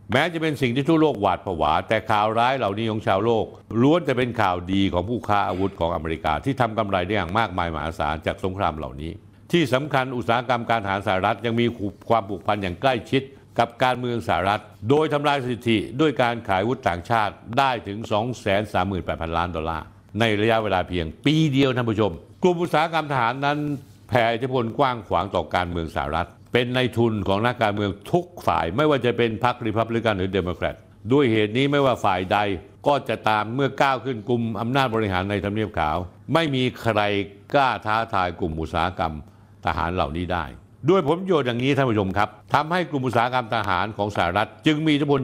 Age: 60-79